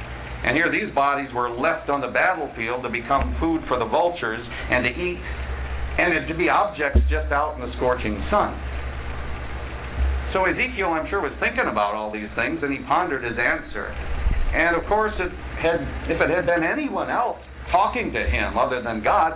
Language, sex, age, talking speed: English, male, 50-69, 180 wpm